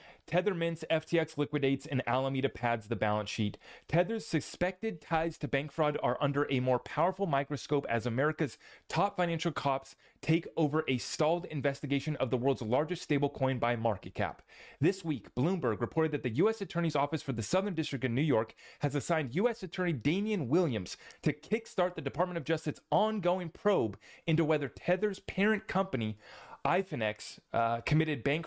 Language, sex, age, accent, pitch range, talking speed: English, male, 30-49, American, 130-170 Hz, 170 wpm